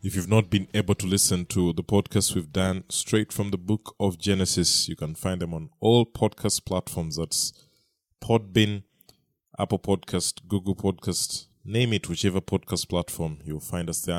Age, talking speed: 20-39, 175 wpm